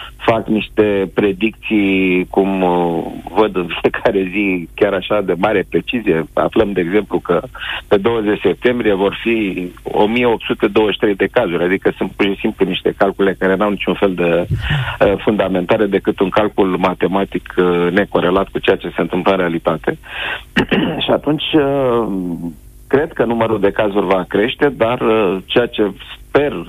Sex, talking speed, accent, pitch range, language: male, 155 wpm, native, 95-110 Hz, Romanian